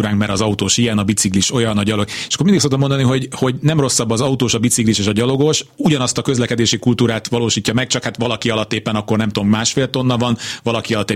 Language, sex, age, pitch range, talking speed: Hungarian, male, 30-49, 110-130 Hz, 235 wpm